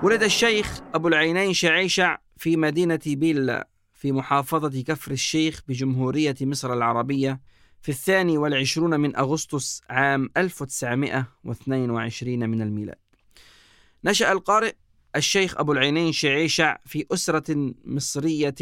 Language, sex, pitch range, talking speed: Arabic, male, 135-175 Hz, 105 wpm